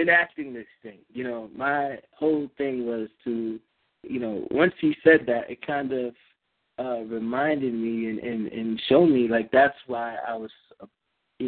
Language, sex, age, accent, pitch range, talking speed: English, male, 20-39, American, 110-140 Hz, 175 wpm